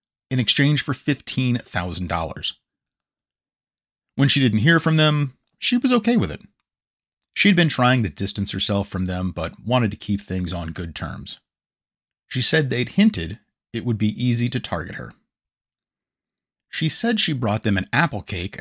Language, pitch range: English, 95-130 Hz